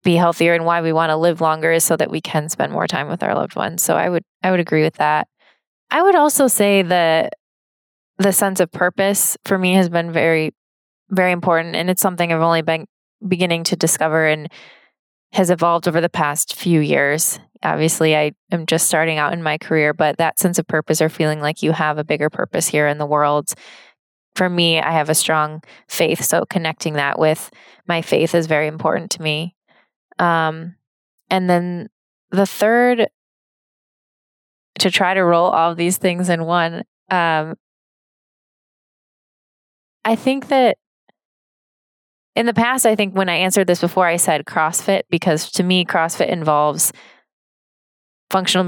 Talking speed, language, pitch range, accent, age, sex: 180 wpm, English, 155-185 Hz, American, 20-39, female